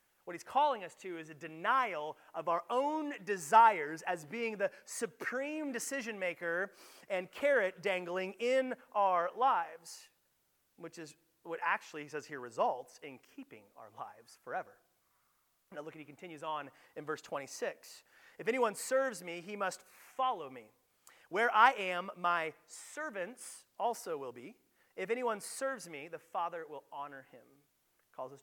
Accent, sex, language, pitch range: American, male, English, 155-245 Hz